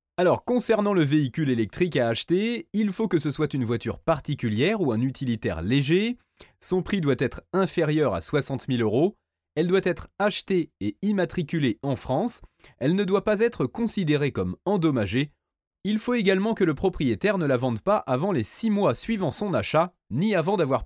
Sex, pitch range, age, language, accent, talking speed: male, 130-195 Hz, 30-49, French, French, 185 wpm